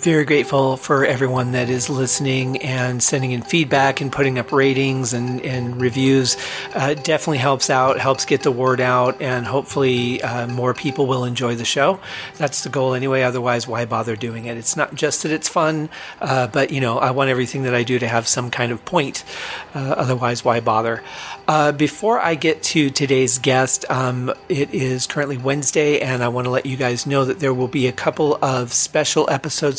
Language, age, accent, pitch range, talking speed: English, 40-59, American, 125-140 Hz, 205 wpm